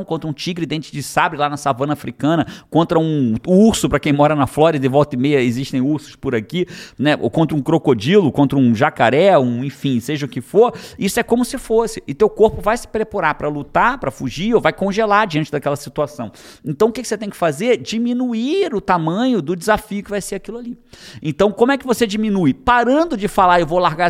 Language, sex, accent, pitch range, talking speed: Portuguese, male, Brazilian, 150-210 Hz, 225 wpm